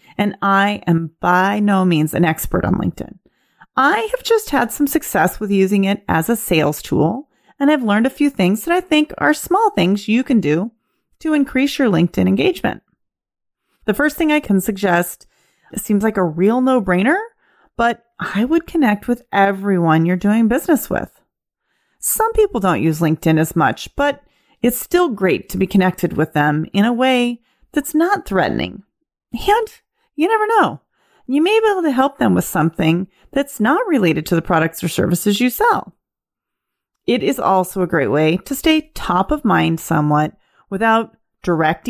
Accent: American